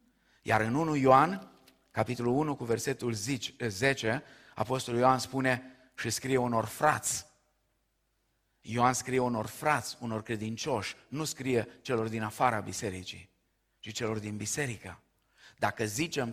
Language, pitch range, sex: Romanian, 110-140 Hz, male